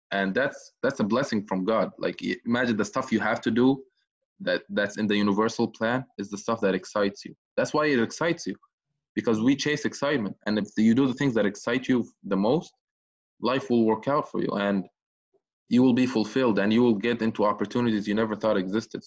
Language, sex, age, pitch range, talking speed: English, male, 20-39, 100-115 Hz, 215 wpm